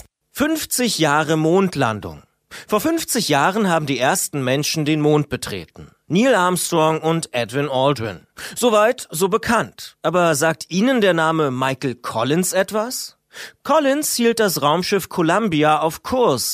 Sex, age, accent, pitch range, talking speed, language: male, 40-59, German, 130-190 Hz, 130 wpm, German